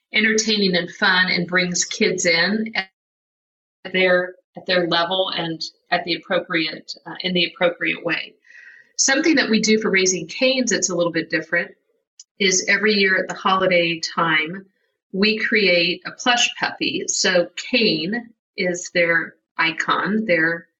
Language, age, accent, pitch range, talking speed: English, 50-69, American, 175-210 Hz, 145 wpm